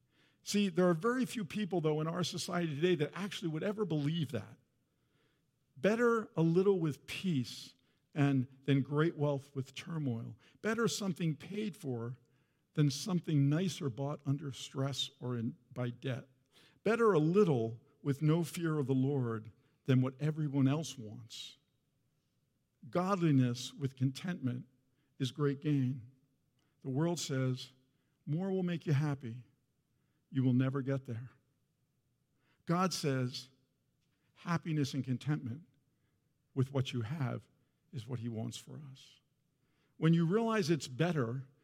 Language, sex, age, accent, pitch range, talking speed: English, male, 50-69, American, 130-170 Hz, 135 wpm